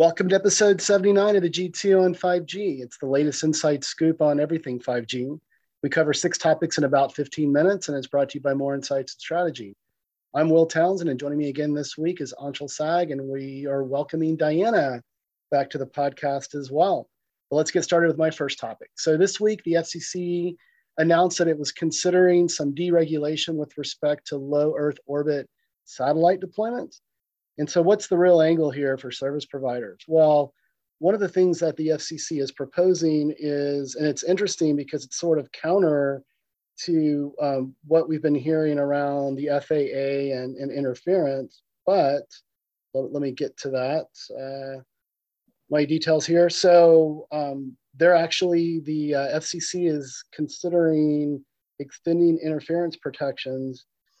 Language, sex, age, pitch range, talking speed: English, male, 40-59, 140-170 Hz, 165 wpm